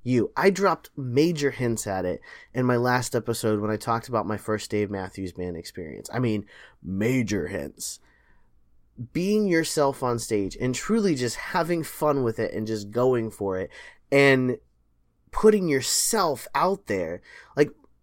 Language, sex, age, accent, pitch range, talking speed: English, male, 20-39, American, 115-160 Hz, 155 wpm